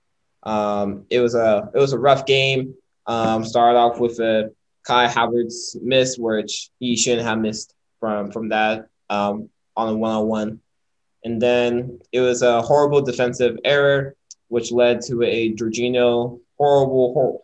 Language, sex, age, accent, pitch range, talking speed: English, male, 20-39, American, 115-135 Hz, 150 wpm